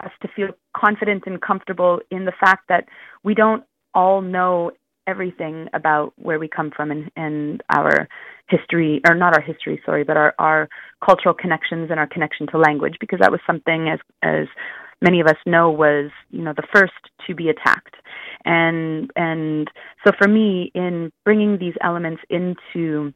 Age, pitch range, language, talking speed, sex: 30-49, 155-185 Hz, English, 175 wpm, female